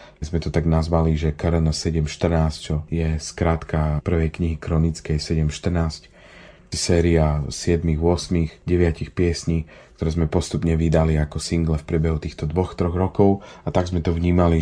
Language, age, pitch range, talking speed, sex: Slovak, 30-49, 80-85 Hz, 145 wpm, male